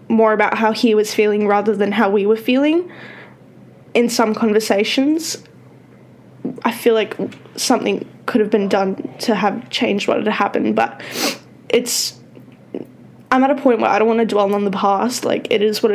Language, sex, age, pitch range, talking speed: English, female, 10-29, 220-280 Hz, 180 wpm